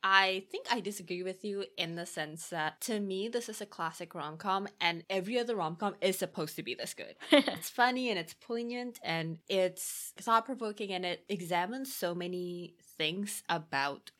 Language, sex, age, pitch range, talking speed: English, female, 20-39, 170-210 Hz, 180 wpm